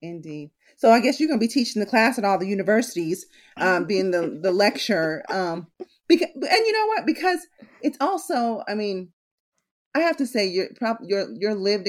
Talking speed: 195 wpm